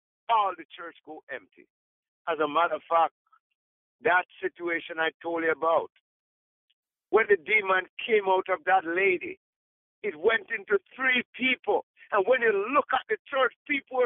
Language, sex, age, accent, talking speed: English, male, 60-79, American, 160 wpm